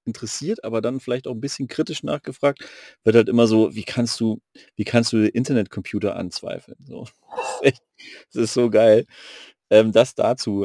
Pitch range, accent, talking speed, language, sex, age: 105-125 Hz, German, 185 wpm, German, male, 40-59